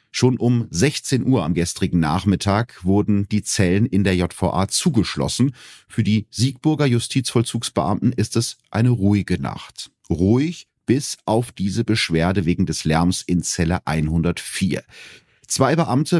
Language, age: German, 40-59